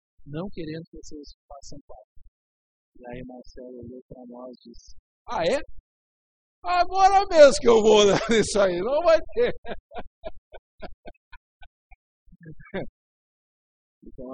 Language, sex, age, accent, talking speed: Portuguese, male, 50-69, Brazilian, 115 wpm